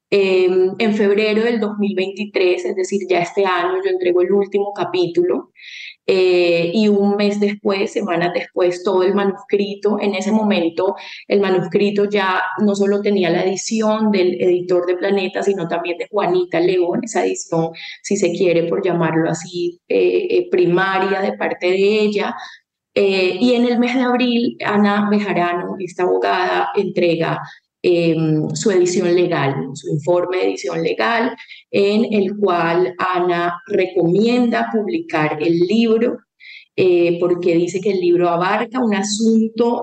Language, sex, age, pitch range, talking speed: English, female, 20-39, 180-220 Hz, 150 wpm